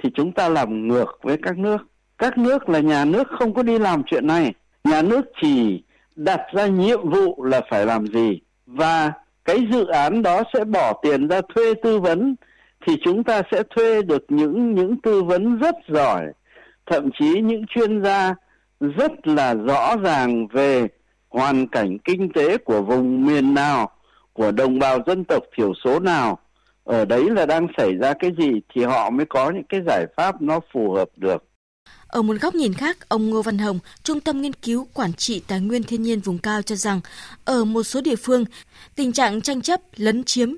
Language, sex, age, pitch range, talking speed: Vietnamese, male, 60-79, 180-250 Hz, 200 wpm